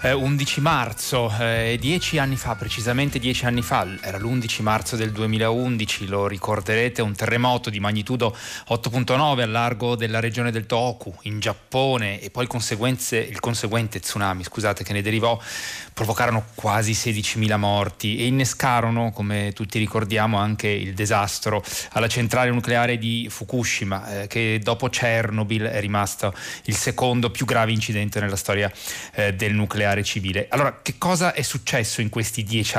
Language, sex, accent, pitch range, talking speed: Italian, male, native, 105-120 Hz, 150 wpm